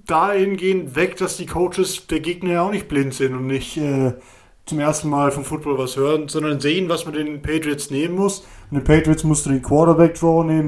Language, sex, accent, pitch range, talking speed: German, male, German, 135-165 Hz, 215 wpm